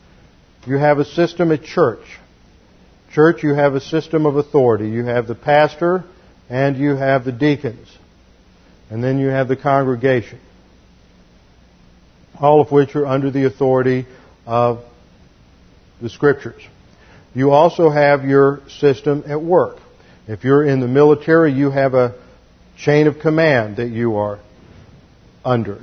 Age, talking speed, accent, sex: 50-69, 140 wpm, American, male